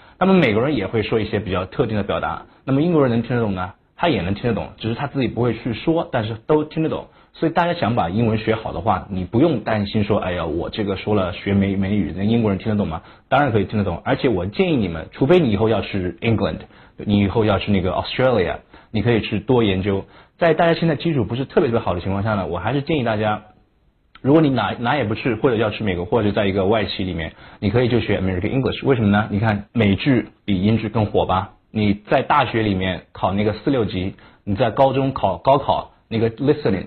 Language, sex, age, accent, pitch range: Chinese, male, 20-39, native, 100-120 Hz